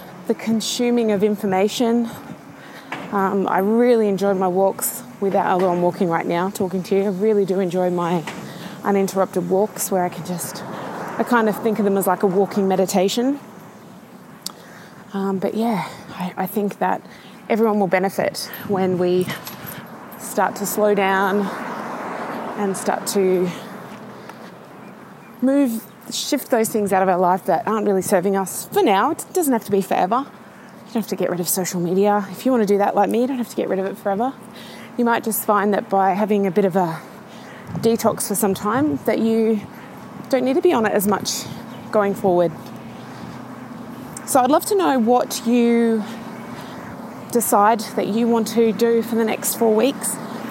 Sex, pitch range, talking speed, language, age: female, 195-230 Hz, 180 wpm, English, 20-39